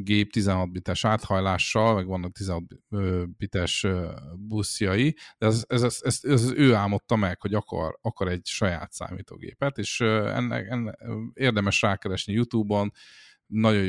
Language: Hungarian